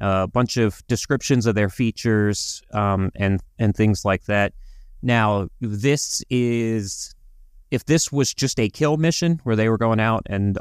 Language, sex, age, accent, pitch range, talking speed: English, male, 30-49, American, 95-125 Hz, 170 wpm